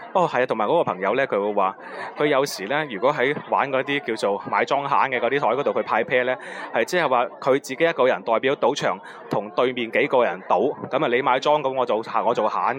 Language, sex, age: Chinese, male, 20-39